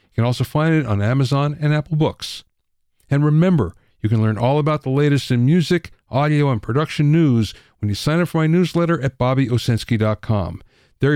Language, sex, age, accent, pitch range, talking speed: English, male, 50-69, American, 100-150 Hz, 190 wpm